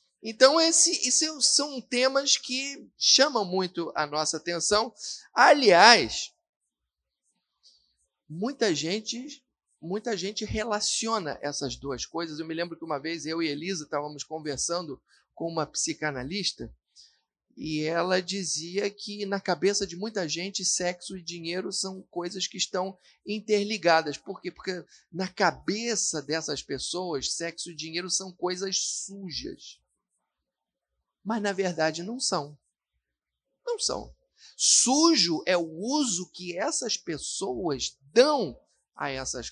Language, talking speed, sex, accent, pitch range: Portuguese, 120 wpm, male, Brazilian, 160-220 Hz